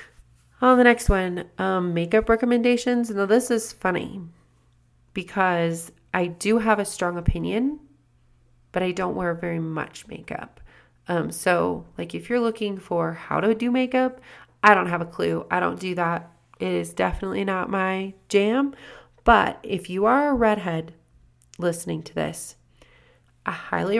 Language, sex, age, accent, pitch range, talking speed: English, female, 30-49, American, 120-200 Hz, 155 wpm